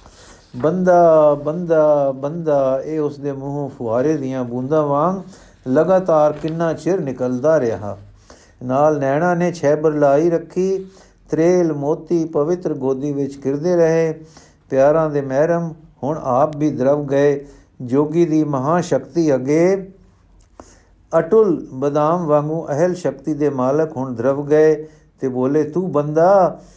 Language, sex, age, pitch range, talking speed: Punjabi, male, 60-79, 135-175 Hz, 125 wpm